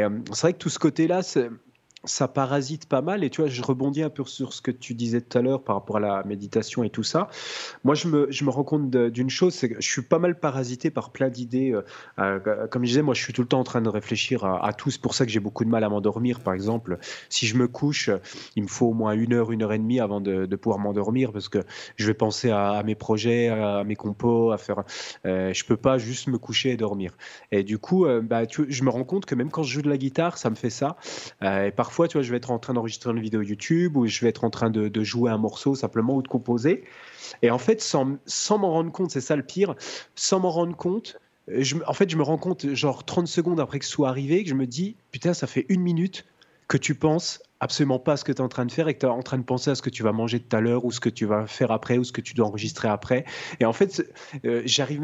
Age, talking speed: 30-49, 290 wpm